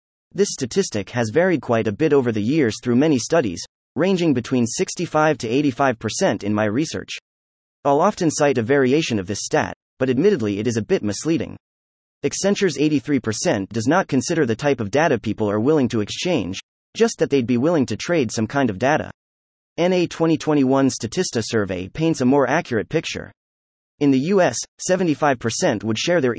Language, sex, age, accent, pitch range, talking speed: English, male, 30-49, American, 110-160 Hz, 175 wpm